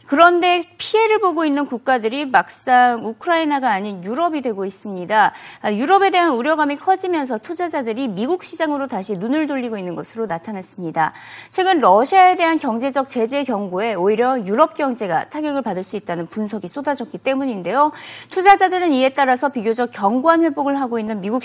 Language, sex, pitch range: Korean, female, 225-320 Hz